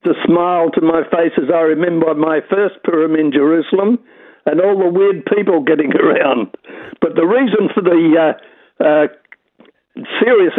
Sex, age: male, 60-79